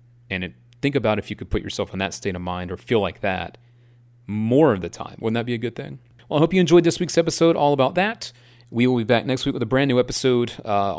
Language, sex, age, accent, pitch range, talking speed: English, male, 30-49, American, 110-145 Hz, 275 wpm